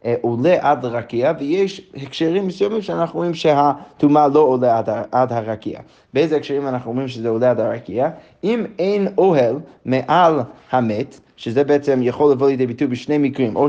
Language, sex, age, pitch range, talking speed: Hebrew, male, 20-39, 125-170 Hz, 155 wpm